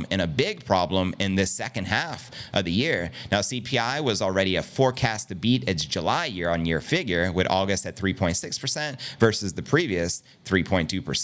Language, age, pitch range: English, 30-49, 95-125 Hz